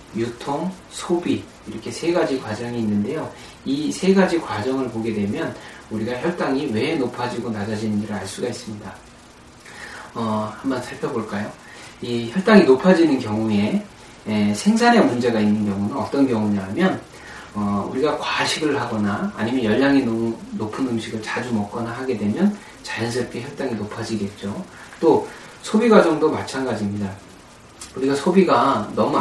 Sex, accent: male, native